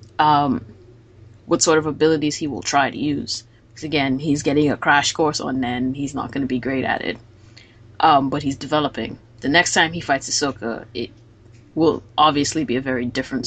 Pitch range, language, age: 115-155 Hz, English, 20-39